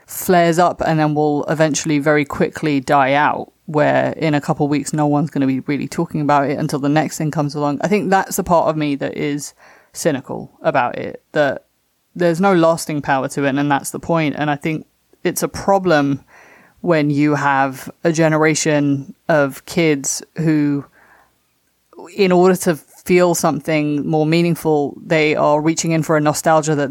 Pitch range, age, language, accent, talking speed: 145-170 Hz, 20-39, English, British, 185 wpm